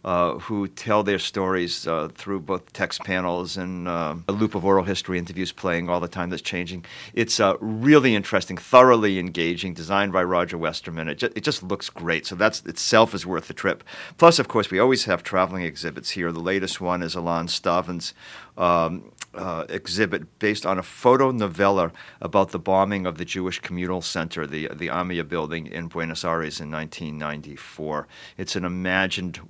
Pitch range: 85-100 Hz